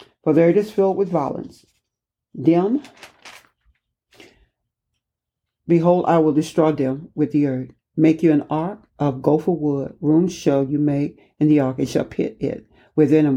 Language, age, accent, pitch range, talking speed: English, 60-79, American, 140-160 Hz, 160 wpm